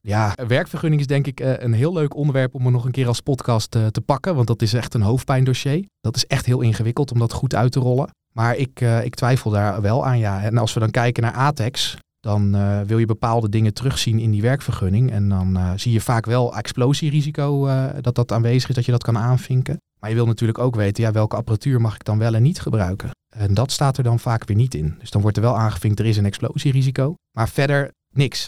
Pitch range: 105-130 Hz